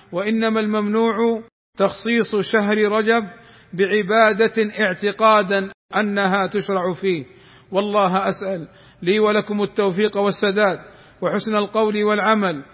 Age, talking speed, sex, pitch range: 50-69, 90 wpm, male, 185-210 Hz